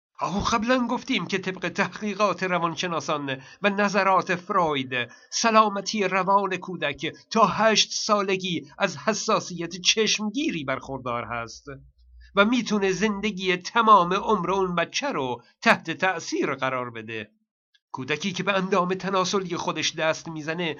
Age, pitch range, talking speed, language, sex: 50-69, 165-220 Hz, 120 wpm, Persian, male